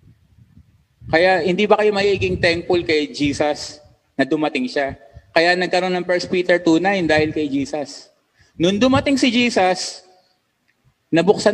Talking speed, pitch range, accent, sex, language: 130 wpm, 180-250 Hz, native, male, Filipino